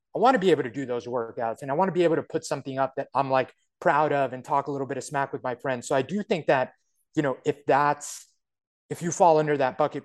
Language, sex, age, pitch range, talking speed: English, male, 30-49, 130-165 Hz, 295 wpm